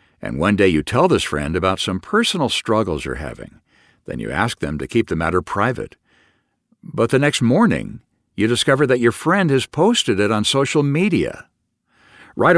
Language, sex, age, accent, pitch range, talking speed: English, male, 60-79, American, 95-140 Hz, 180 wpm